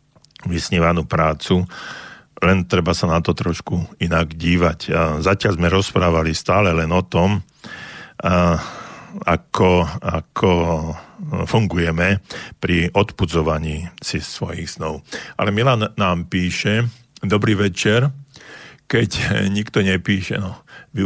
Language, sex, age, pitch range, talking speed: Slovak, male, 50-69, 90-105 Hz, 100 wpm